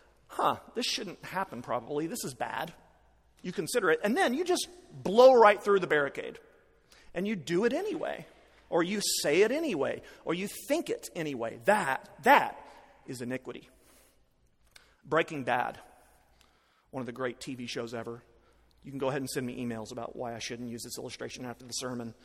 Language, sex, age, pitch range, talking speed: English, male, 40-59, 125-160 Hz, 180 wpm